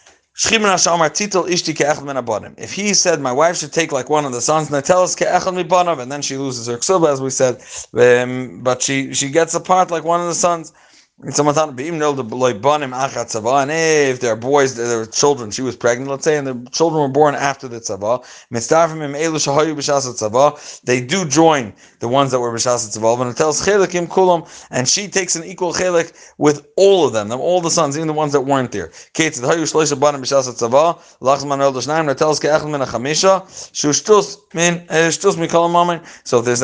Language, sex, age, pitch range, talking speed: English, male, 30-49, 130-165 Hz, 140 wpm